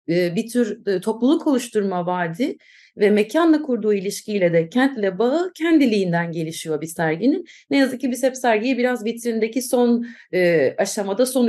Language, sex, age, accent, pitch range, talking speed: Turkish, female, 30-49, native, 195-255 Hz, 145 wpm